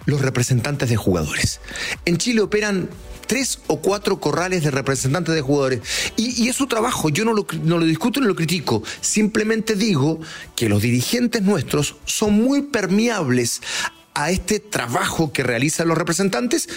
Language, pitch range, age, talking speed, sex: Spanish, 125-195 Hz, 40-59, 155 wpm, male